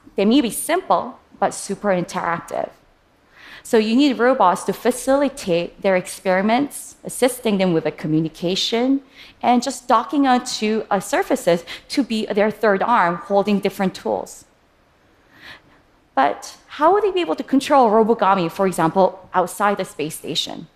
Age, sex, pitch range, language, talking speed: 20-39, female, 170-225 Hz, French, 140 wpm